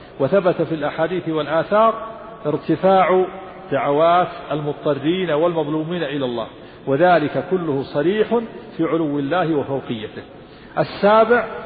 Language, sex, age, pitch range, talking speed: Arabic, male, 50-69, 155-195 Hz, 95 wpm